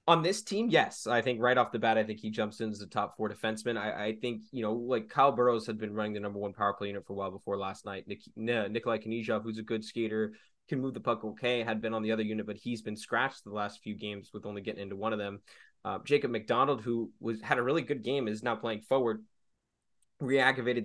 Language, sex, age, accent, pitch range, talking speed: English, male, 20-39, American, 105-125 Hz, 265 wpm